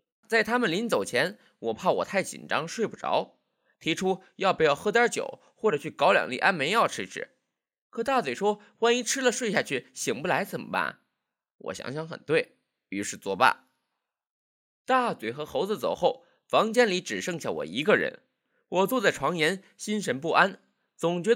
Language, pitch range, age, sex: Chinese, 185-245 Hz, 20-39, male